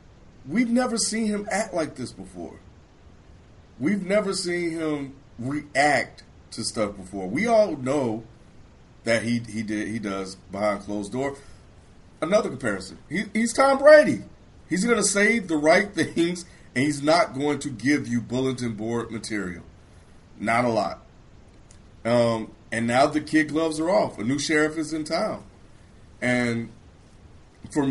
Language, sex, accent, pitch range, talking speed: English, male, American, 100-145 Hz, 150 wpm